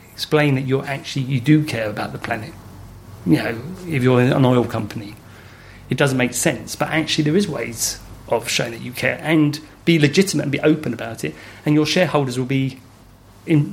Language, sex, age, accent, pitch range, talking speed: English, male, 30-49, British, 115-145 Hz, 200 wpm